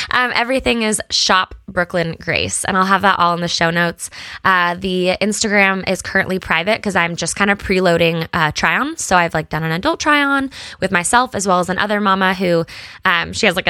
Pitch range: 180-220 Hz